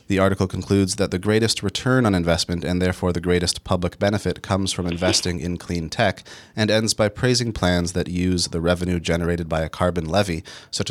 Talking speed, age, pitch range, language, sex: 200 wpm, 30-49, 85-110 Hz, English, male